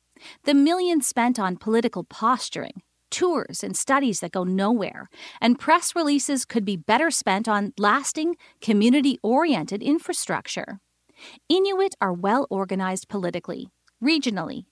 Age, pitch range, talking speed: 40-59, 205-295 Hz, 115 wpm